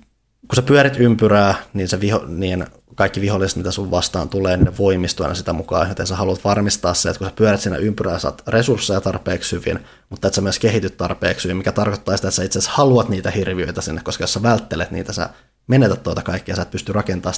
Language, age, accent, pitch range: Finnish, 20-39, native, 90-105 Hz